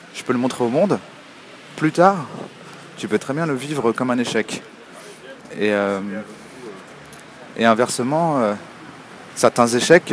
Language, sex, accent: French, male, French